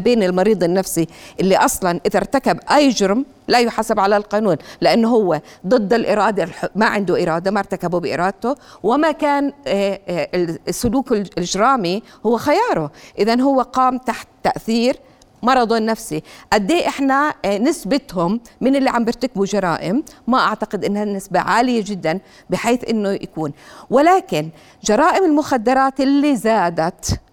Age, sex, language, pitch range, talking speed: 50-69, female, Arabic, 190-255 Hz, 125 wpm